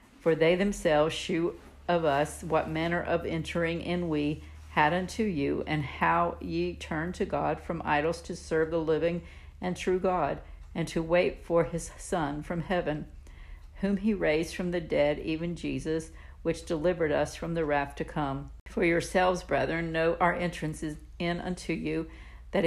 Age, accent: 50-69, American